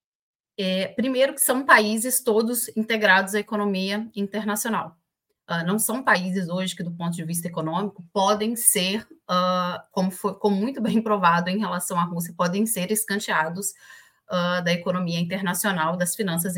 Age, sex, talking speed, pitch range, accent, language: 30-49, female, 155 wpm, 180-225 Hz, Brazilian, Portuguese